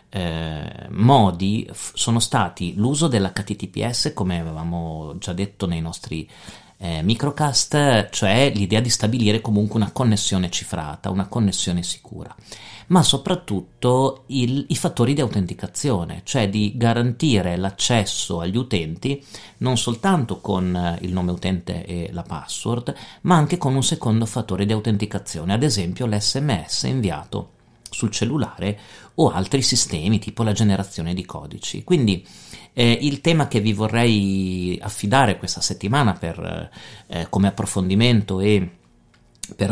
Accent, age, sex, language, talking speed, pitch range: native, 40-59, male, Italian, 125 wpm, 95-125 Hz